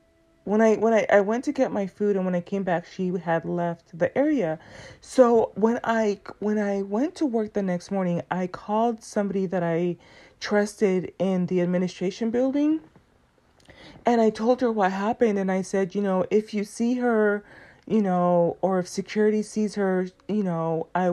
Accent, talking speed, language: American, 185 wpm, English